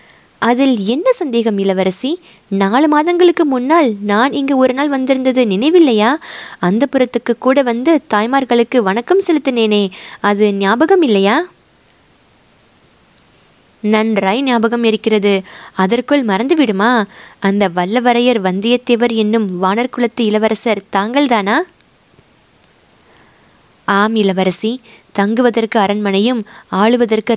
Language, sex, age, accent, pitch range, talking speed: Tamil, female, 20-39, native, 200-245 Hz, 90 wpm